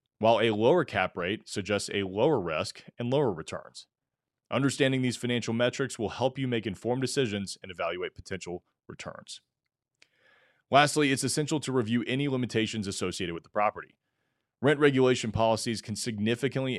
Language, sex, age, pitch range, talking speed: English, male, 30-49, 105-125 Hz, 150 wpm